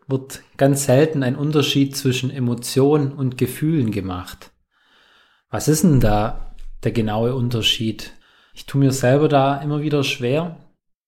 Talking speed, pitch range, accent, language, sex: 135 wpm, 120-145 Hz, German, German, male